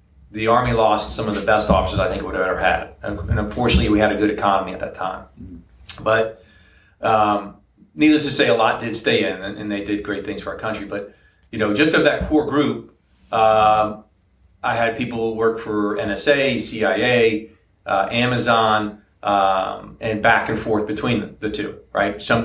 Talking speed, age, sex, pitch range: 190 wpm, 40-59, male, 95-115 Hz